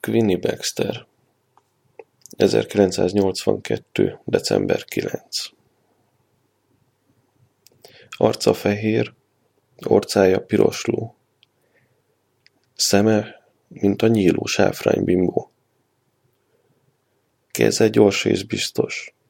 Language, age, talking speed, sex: Hungarian, 30-49, 60 wpm, male